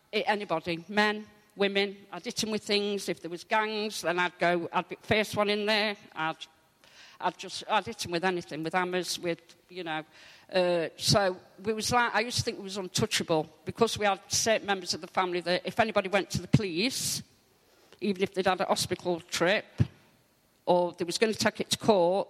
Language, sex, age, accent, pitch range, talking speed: English, female, 50-69, British, 165-200 Hz, 205 wpm